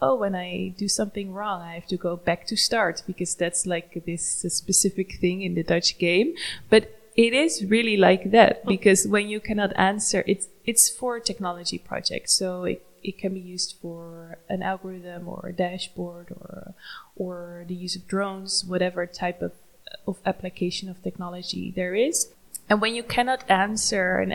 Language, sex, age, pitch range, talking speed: English, female, 20-39, 180-200 Hz, 175 wpm